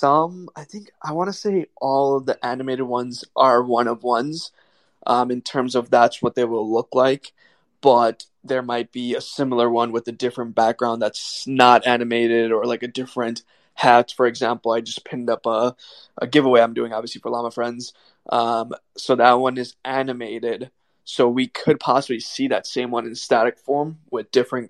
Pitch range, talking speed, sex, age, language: 120-130 Hz, 190 wpm, male, 20-39, English